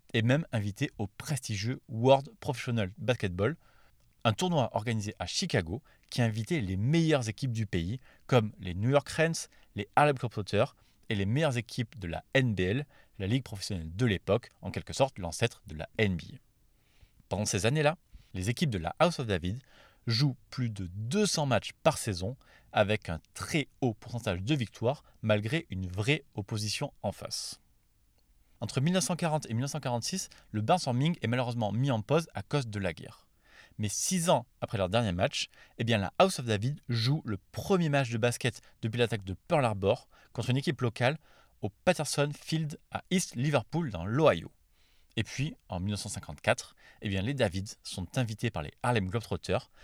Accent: French